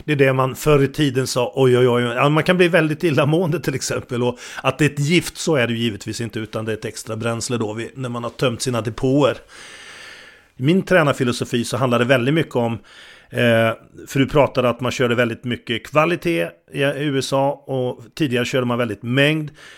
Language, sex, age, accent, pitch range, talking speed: English, male, 40-59, Swedish, 120-150 Hz, 205 wpm